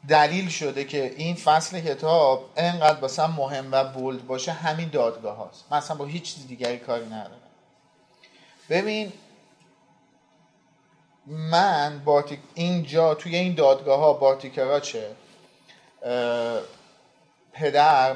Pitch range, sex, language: 135-180 Hz, male, Persian